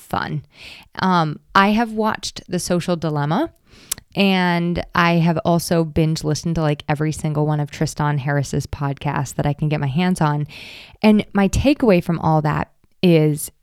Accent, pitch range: American, 155-185 Hz